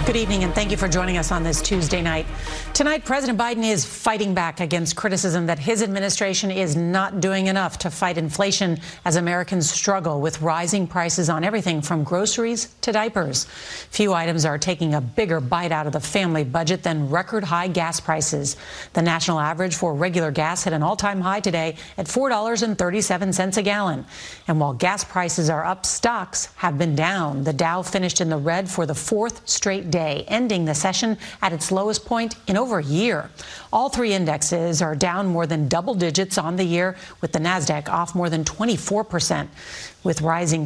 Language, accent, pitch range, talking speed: English, American, 165-200 Hz, 190 wpm